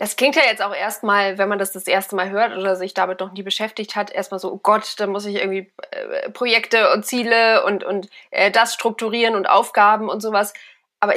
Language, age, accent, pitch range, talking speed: German, 20-39, German, 200-250 Hz, 225 wpm